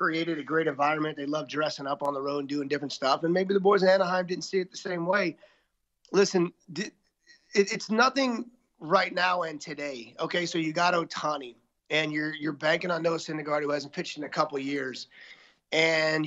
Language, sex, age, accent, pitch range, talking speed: English, male, 30-49, American, 155-190 Hz, 205 wpm